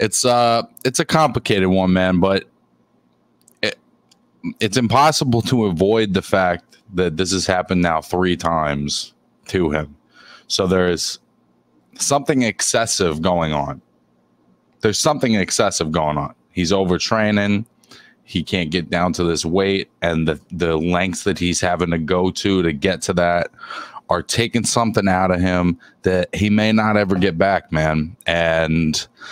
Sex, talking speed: male, 155 wpm